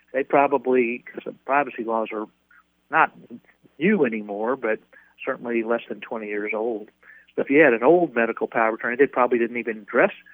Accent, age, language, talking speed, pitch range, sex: American, 40-59, English, 180 wpm, 115-130 Hz, male